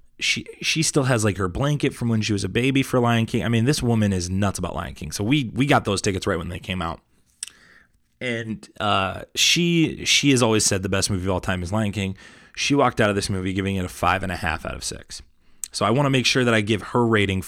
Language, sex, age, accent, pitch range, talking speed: English, male, 20-39, American, 95-115 Hz, 270 wpm